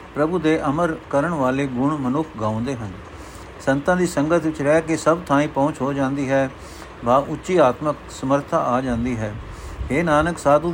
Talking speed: 180 wpm